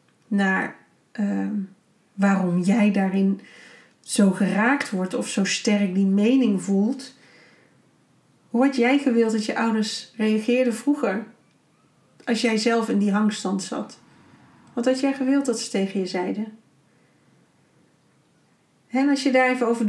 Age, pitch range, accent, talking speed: 40-59, 210-255 Hz, Dutch, 135 wpm